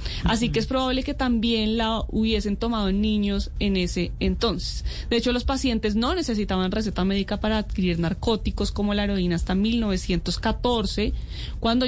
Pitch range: 200-250 Hz